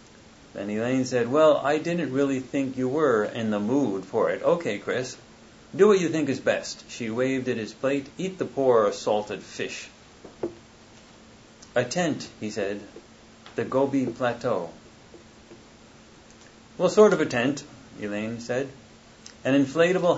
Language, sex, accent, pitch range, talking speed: English, male, American, 105-135 Hz, 145 wpm